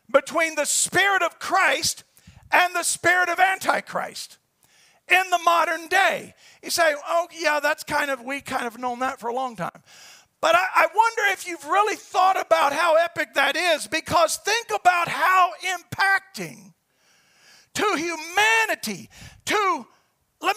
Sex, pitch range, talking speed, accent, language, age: male, 280-375 Hz, 150 wpm, American, English, 50-69